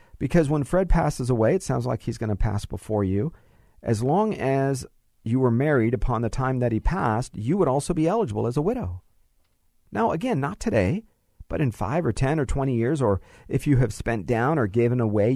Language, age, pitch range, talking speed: English, 40-59, 110-150 Hz, 215 wpm